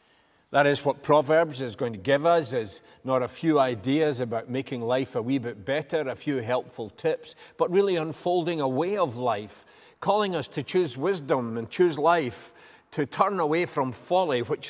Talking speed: 190 wpm